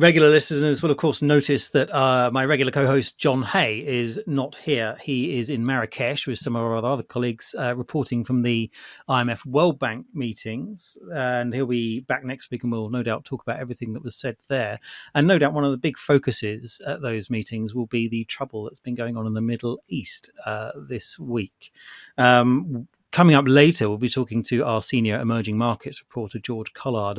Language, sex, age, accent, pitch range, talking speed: English, male, 30-49, British, 115-140 Hz, 200 wpm